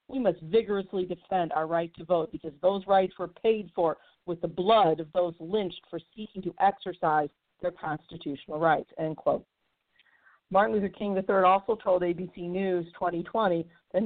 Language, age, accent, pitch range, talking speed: English, 50-69, American, 170-205 Hz, 165 wpm